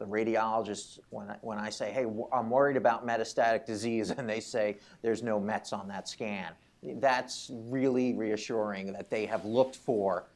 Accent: American